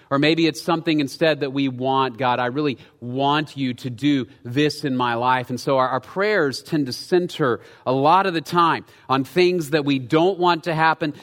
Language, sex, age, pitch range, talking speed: English, male, 40-59, 140-195 Hz, 215 wpm